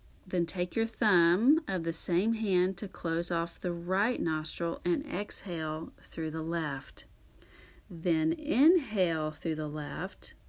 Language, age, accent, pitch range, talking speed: English, 40-59, American, 155-180 Hz, 135 wpm